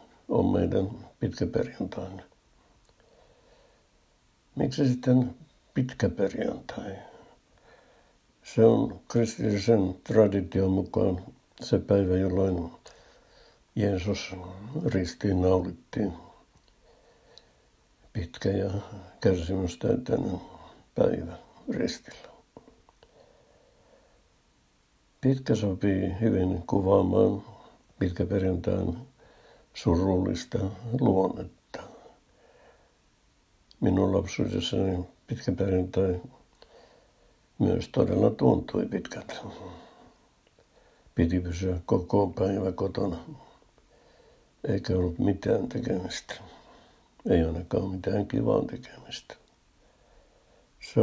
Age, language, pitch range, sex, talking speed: 60-79, Finnish, 90-110 Hz, male, 60 wpm